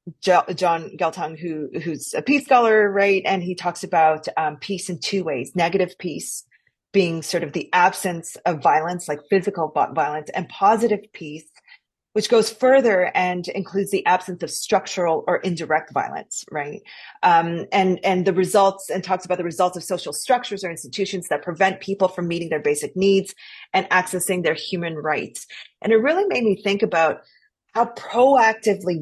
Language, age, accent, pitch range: English, 30-49, American, 165-200 Hz